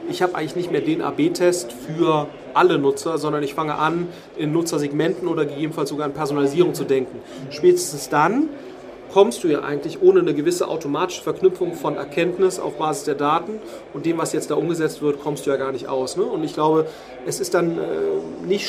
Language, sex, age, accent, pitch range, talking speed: German, male, 30-49, German, 150-200 Hz, 200 wpm